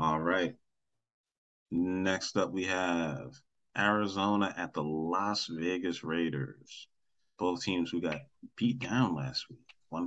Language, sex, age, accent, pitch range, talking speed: English, male, 30-49, American, 85-100 Hz, 125 wpm